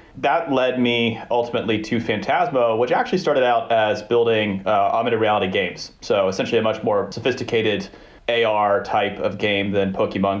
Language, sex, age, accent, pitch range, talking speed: English, male, 30-49, American, 100-120 Hz, 160 wpm